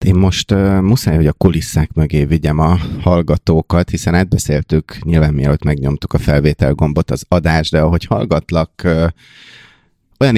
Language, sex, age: Hungarian, male, 30-49